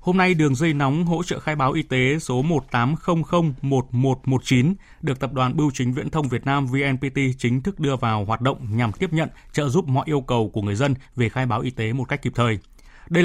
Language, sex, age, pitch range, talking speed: Vietnamese, male, 20-39, 120-150 Hz, 225 wpm